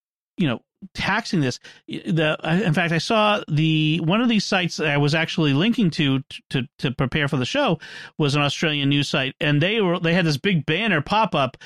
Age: 40-59